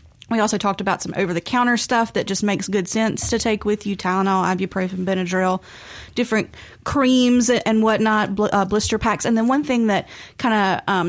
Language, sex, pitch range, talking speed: English, female, 185-230 Hz, 180 wpm